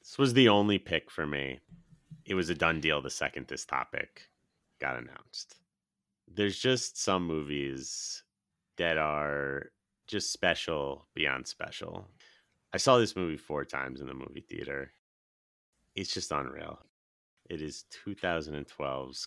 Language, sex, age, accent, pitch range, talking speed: English, male, 30-49, American, 75-100 Hz, 135 wpm